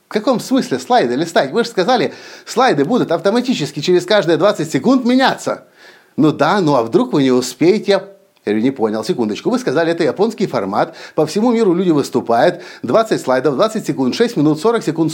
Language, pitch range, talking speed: Russian, 145-195 Hz, 180 wpm